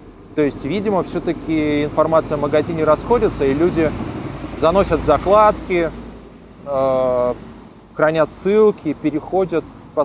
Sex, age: male, 30-49